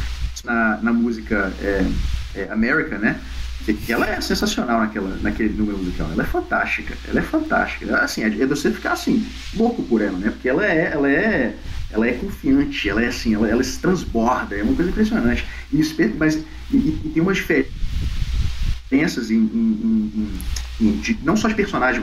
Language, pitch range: Portuguese, 105-150 Hz